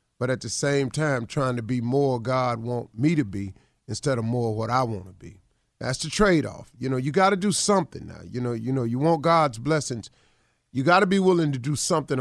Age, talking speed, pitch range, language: 40-59, 235 wpm, 105-135 Hz, English